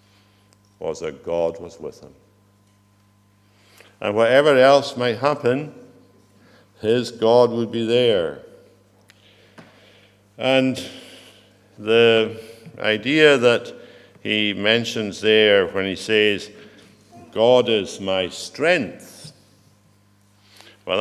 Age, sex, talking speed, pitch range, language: 60-79, male, 90 wpm, 100-120 Hz, English